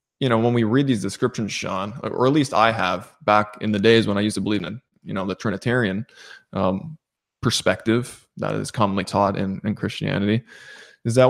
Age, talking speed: 20-39, 200 wpm